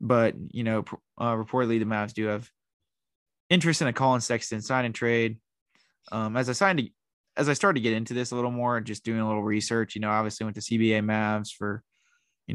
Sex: male